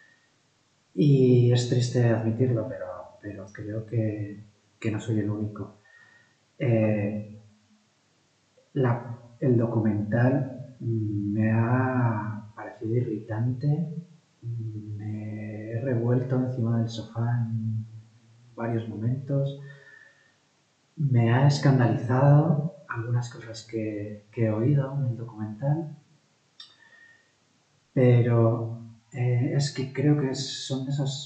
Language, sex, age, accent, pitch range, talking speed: Spanish, male, 30-49, Spanish, 110-135 Hz, 95 wpm